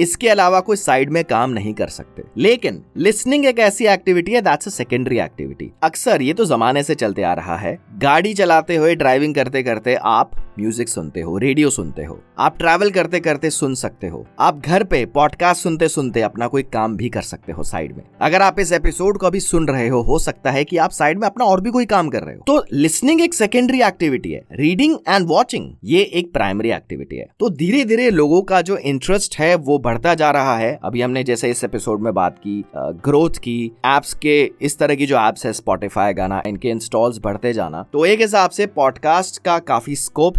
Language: Hindi